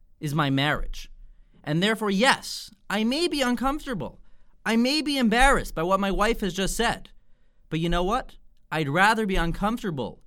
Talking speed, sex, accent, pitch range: 170 wpm, male, American, 150-210 Hz